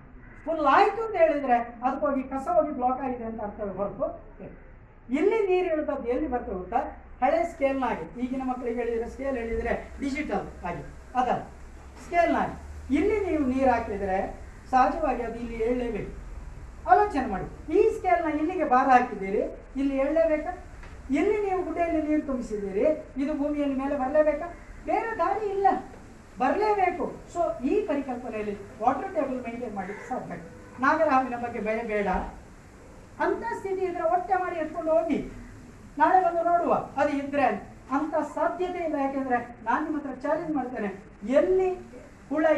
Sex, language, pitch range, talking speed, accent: female, Kannada, 245-330 Hz, 135 wpm, native